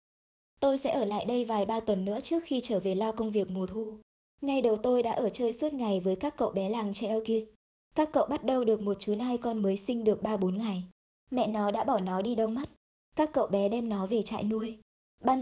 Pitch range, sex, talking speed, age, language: 205-255 Hz, male, 250 wpm, 20-39, Vietnamese